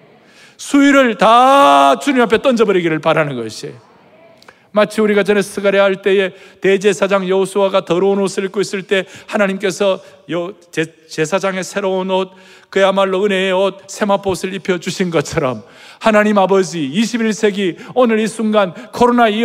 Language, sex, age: Korean, male, 40-59